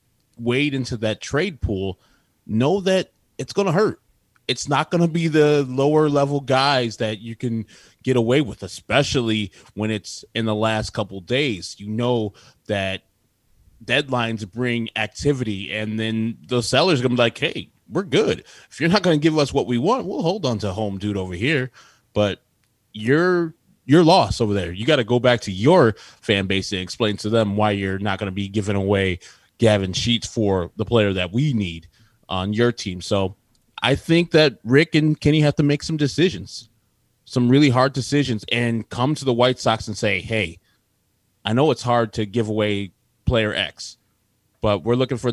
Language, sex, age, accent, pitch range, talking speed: English, male, 20-39, American, 105-130 Hz, 190 wpm